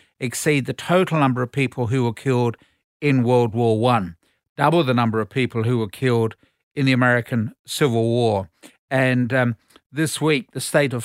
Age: 50-69